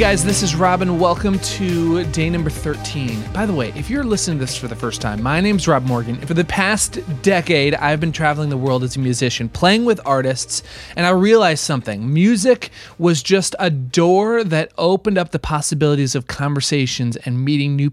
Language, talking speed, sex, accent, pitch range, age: English, 200 wpm, male, American, 135-185 Hz, 30-49